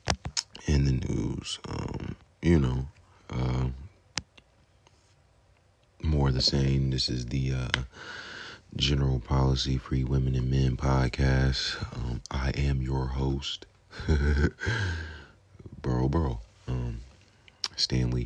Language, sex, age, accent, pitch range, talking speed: English, male, 30-49, American, 65-70 Hz, 100 wpm